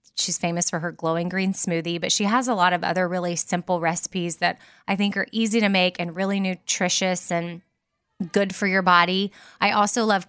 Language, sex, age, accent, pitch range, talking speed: English, female, 20-39, American, 175-210 Hz, 205 wpm